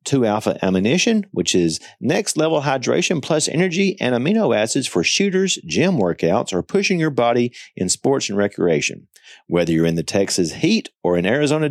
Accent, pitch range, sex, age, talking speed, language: American, 100-155 Hz, male, 40-59, 165 wpm, English